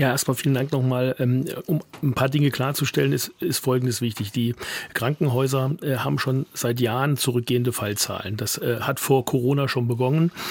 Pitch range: 125-140 Hz